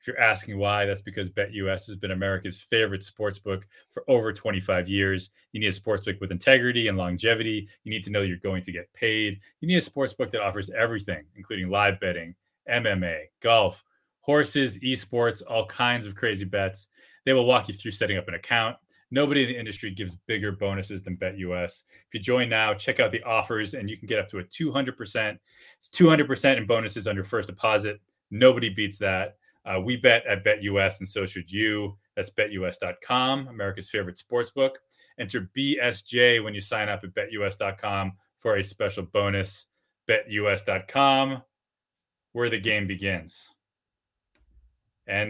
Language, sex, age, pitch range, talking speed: English, male, 30-49, 95-120 Hz, 175 wpm